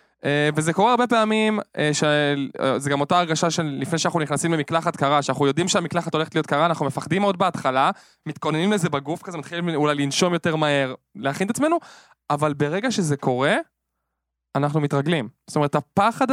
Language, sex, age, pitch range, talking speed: Hebrew, male, 20-39, 135-180 Hz, 160 wpm